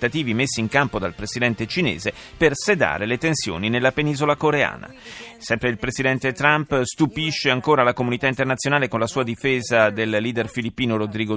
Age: 30-49